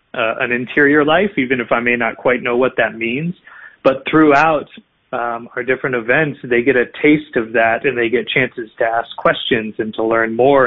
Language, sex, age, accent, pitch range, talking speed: English, male, 30-49, American, 115-135 Hz, 210 wpm